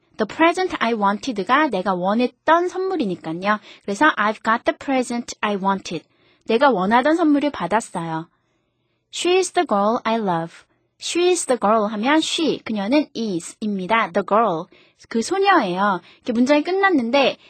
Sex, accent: female, native